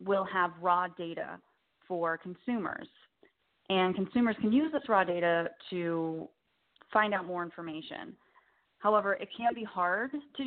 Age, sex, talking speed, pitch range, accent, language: 20-39, female, 140 wpm, 170-210 Hz, American, English